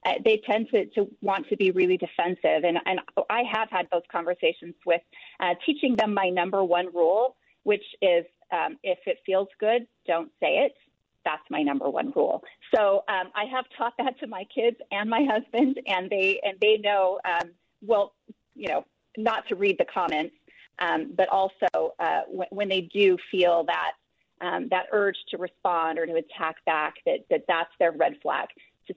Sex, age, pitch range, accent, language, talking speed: female, 30-49, 170-235 Hz, American, English, 190 wpm